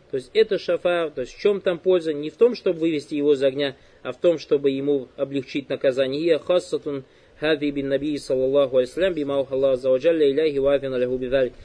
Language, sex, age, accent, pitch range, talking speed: Russian, male, 20-39, native, 145-175 Hz, 135 wpm